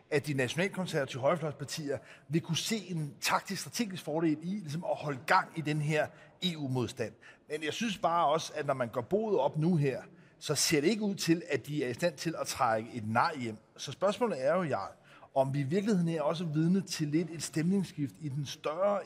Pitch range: 135-180 Hz